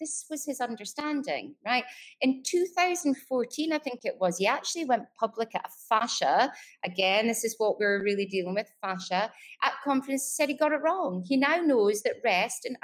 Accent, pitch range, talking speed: British, 205-305 Hz, 190 wpm